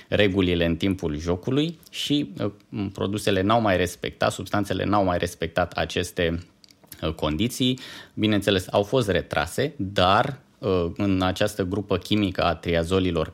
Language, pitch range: Romanian, 90-105 Hz